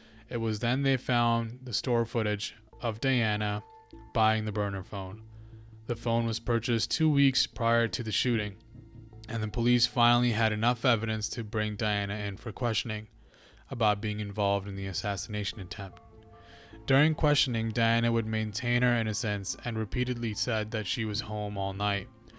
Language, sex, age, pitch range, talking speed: English, male, 20-39, 110-125 Hz, 160 wpm